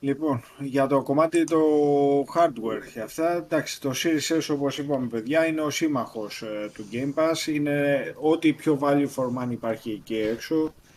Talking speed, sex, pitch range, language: 160 wpm, male, 120-145 Hz, Greek